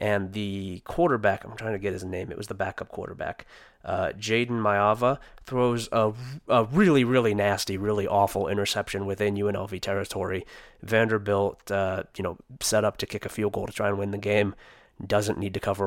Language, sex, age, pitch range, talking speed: English, male, 20-39, 100-115 Hz, 190 wpm